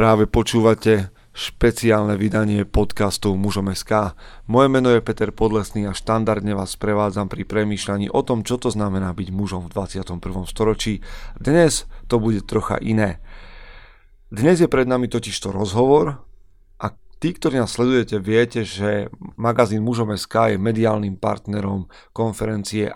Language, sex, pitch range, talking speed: Slovak, male, 100-115 Hz, 135 wpm